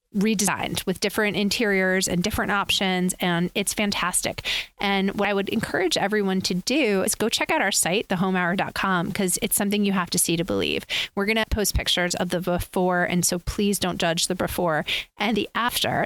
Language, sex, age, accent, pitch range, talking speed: English, female, 30-49, American, 175-205 Hz, 195 wpm